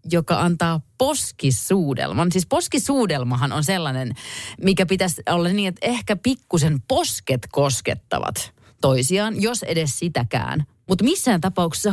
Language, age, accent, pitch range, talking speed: Finnish, 30-49, native, 115-190 Hz, 115 wpm